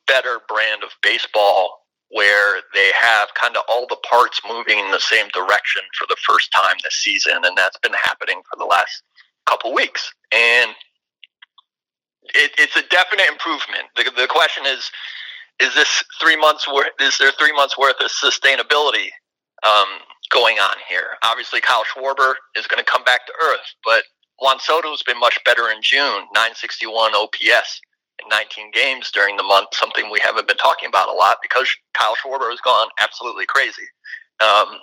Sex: male